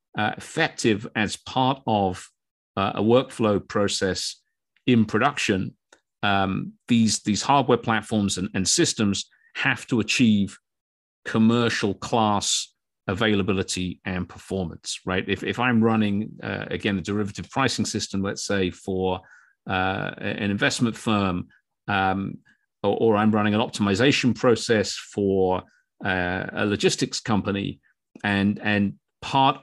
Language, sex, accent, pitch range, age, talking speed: English, male, British, 95-115 Hz, 40-59, 125 wpm